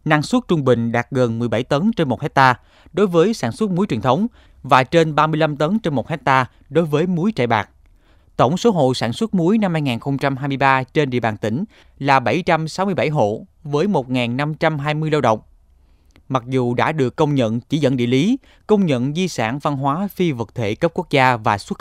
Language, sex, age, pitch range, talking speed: Vietnamese, male, 20-39, 120-165 Hz, 200 wpm